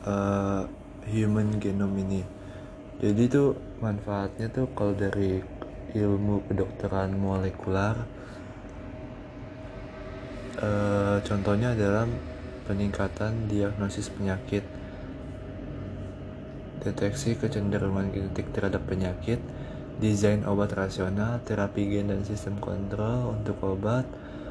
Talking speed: 85 wpm